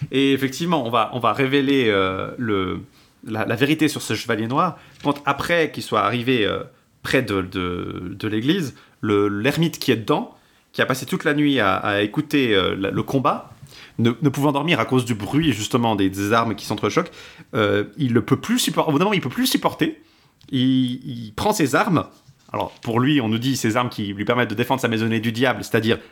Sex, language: male, French